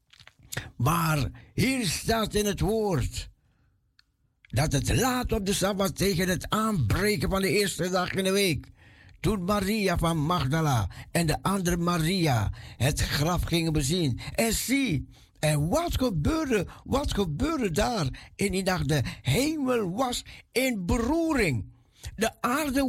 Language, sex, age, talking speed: Dutch, male, 60-79, 135 wpm